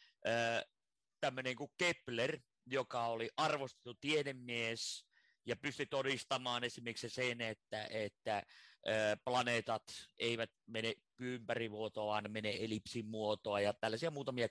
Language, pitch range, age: Finnish, 110-135 Hz, 30-49